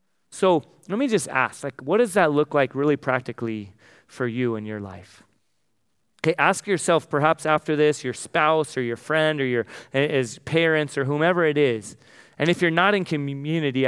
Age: 30-49